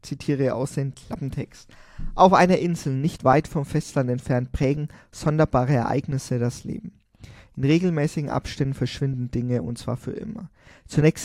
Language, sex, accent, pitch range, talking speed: German, male, German, 125-155 Hz, 145 wpm